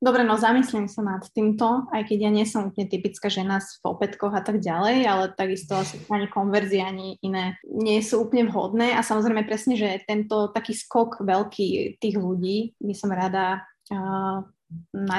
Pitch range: 205-225 Hz